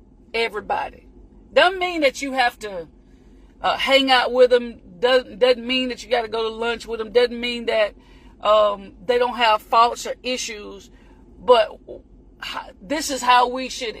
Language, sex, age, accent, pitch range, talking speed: English, female, 40-59, American, 240-300 Hz, 170 wpm